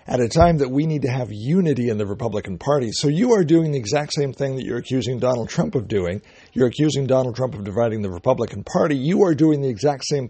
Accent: American